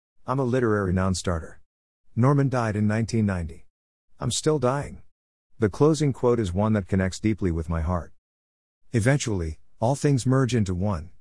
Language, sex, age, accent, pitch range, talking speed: English, male, 50-69, American, 85-115 Hz, 150 wpm